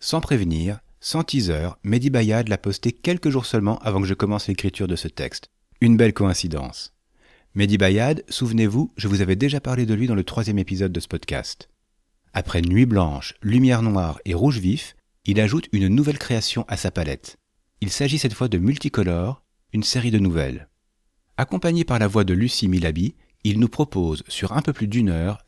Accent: French